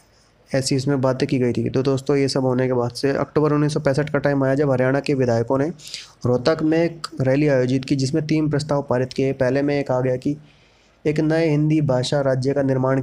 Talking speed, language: 220 wpm, Hindi